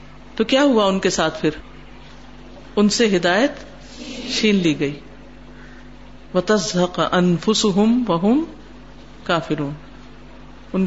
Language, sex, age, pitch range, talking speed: Urdu, female, 50-69, 170-245 Hz, 90 wpm